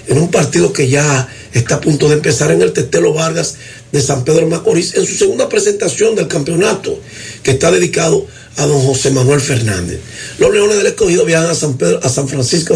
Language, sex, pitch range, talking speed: Spanish, male, 125-175 Hz, 205 wpm